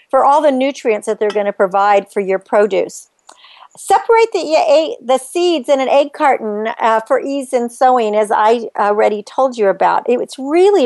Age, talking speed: 50-69, 180 wpm